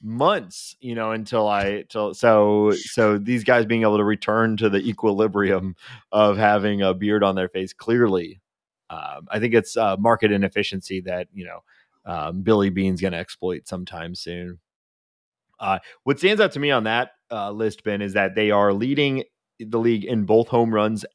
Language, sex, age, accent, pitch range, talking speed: English, male, 30-49, American, 95-110 Hz, 185 wpm